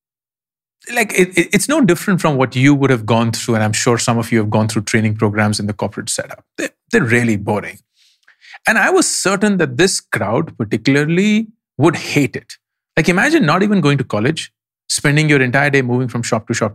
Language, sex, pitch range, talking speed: English, male, 115-160 Hz, 205 wpm